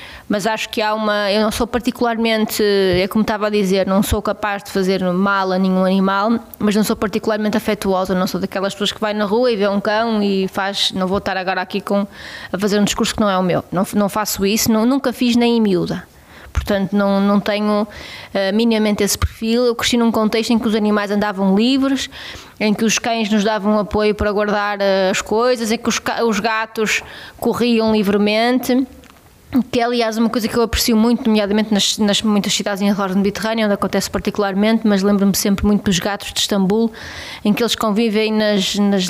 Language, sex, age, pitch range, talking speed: Portuguese, female, 20-39, 200-225 Hz, 205 wpm